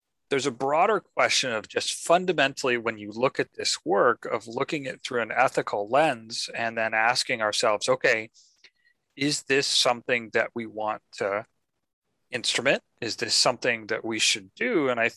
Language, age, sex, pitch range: English, 30-49, male, 115-155 Hz